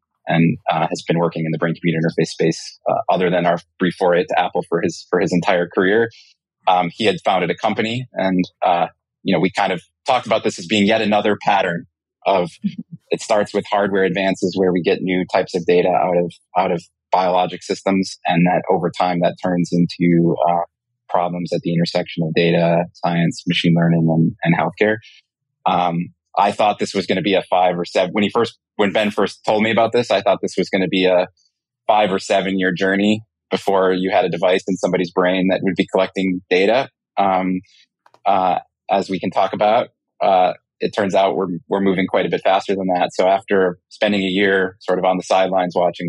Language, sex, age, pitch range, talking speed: English, male, 30-49, 85-95 Hz, 210 wpm